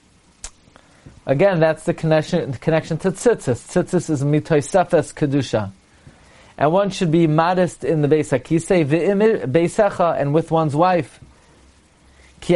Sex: male